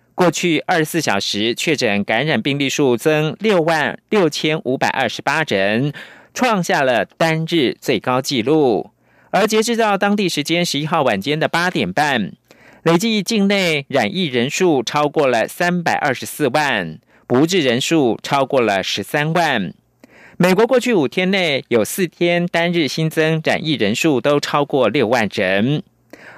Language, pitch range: German, 135-180 Hz